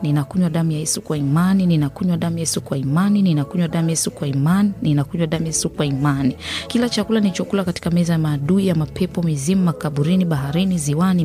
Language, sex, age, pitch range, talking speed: Swahili, female, 30-49, 155-195 Hz, 190 wpm